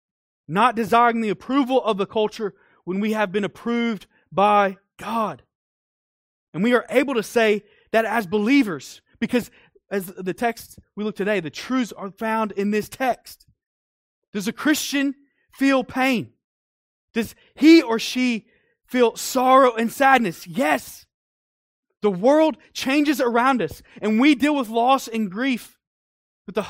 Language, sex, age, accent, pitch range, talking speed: English, male, 20-39, American, 195-255 Hz, 145 wpm